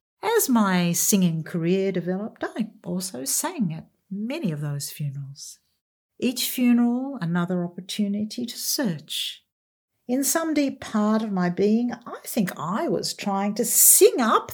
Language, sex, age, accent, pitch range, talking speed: English, female, 50-69, Australian, 180-285 Hz, 140 wpm